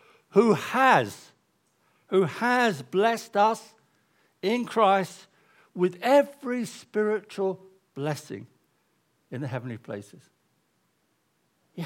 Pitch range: 155-215 Hz